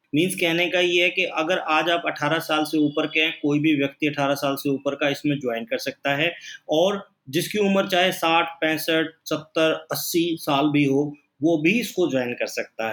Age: 30-49